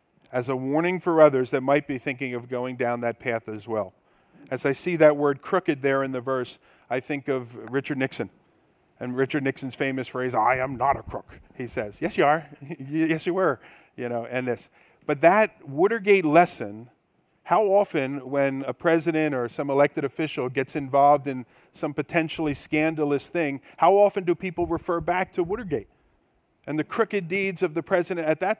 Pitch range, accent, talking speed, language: 130-175 Hz, American, 190 wpm, English